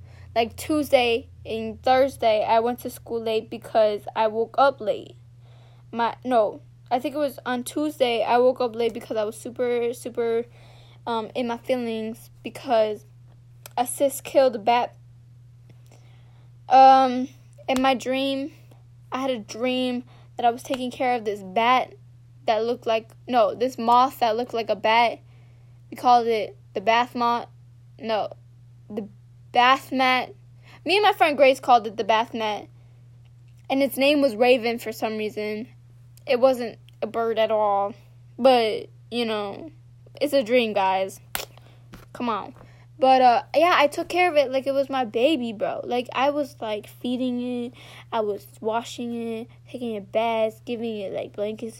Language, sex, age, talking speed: English, female, 10-29, 165 wpm